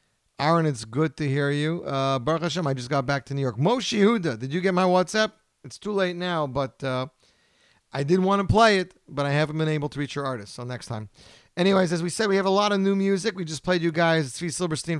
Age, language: 40-59, English